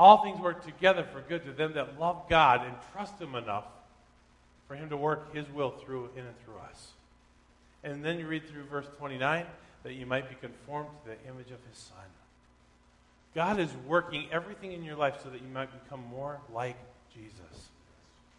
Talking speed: 195 wpm